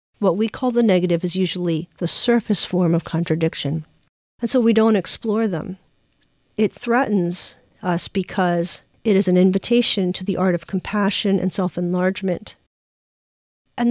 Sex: female